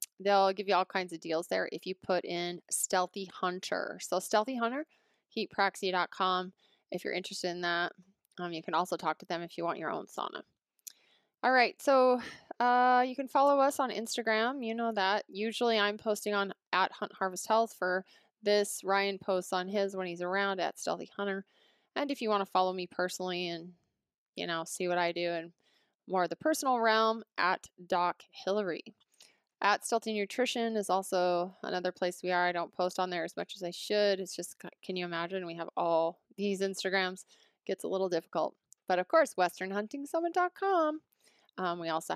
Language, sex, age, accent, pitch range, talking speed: English, female, 20-39, American, 180-220 Hz, 190 wpm